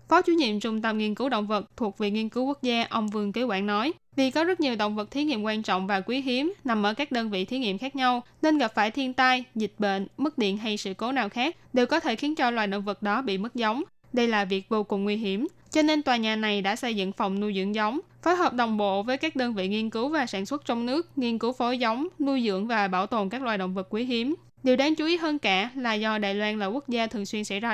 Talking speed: 290 wpm